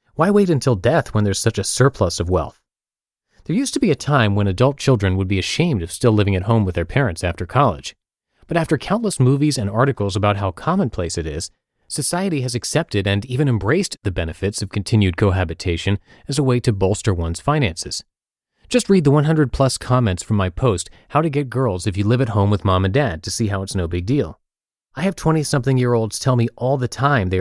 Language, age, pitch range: English, 30-49, 100-140 Hz